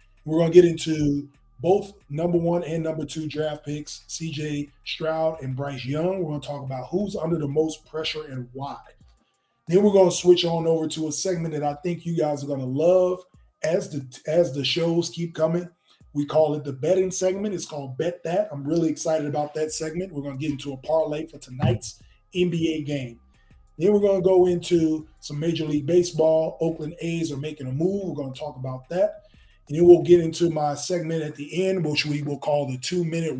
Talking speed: 215 wpm